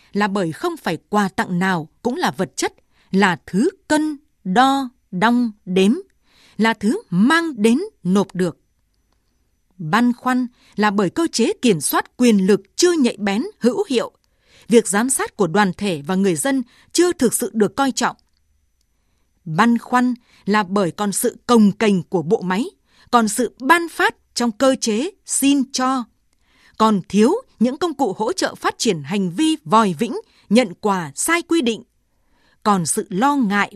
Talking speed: 170 wpm